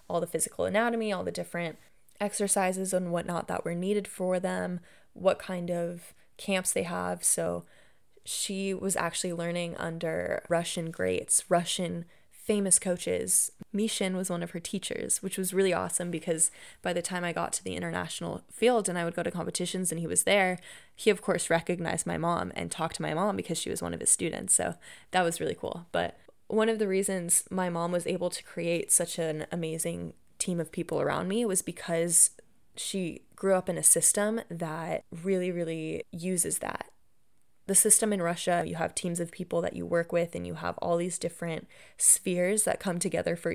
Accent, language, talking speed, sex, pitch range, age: American, English, 195 wpm, female, 170-195 Hz, 20-39